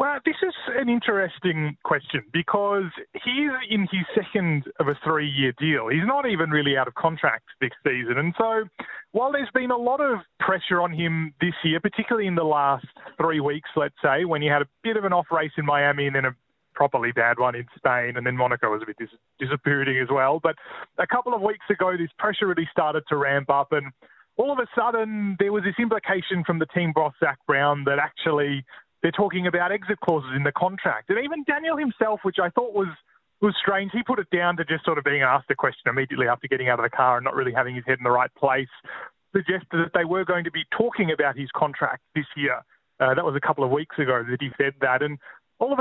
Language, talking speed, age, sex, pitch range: English, 235 wpm, 30-49, male, 140-205 Hz